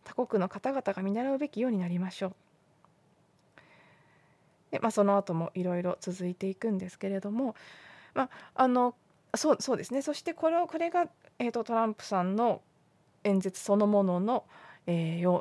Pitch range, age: 190-255 Hz, 20-39